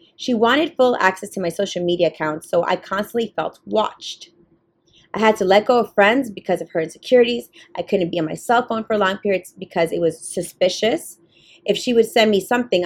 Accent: American